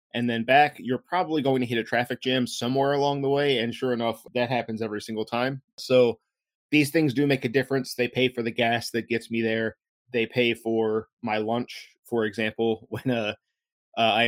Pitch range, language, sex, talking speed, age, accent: 115-130 Hz, English, male, 210 wpm, 20-39, American